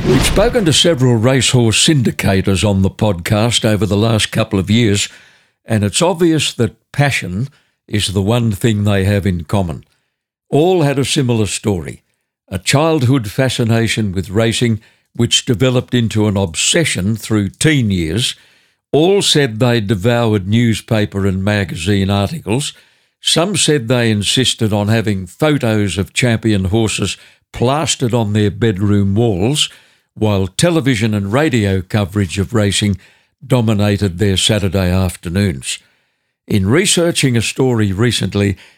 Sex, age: male, 60-79